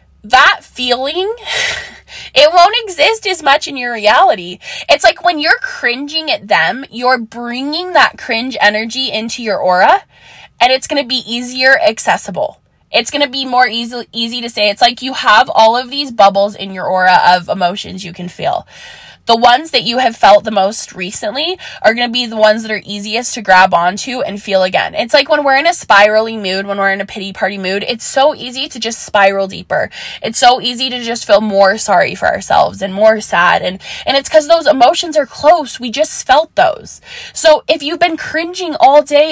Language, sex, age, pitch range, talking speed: English, female, 20-39, 215-295 Hz, 205 wpm